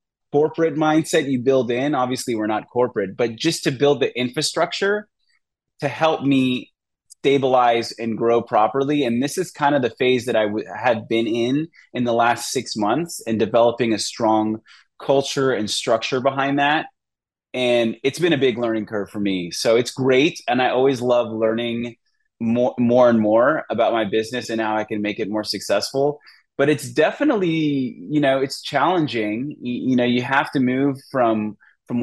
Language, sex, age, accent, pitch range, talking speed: English, male, 20-39, American, 115-140 Hz, 180 wpm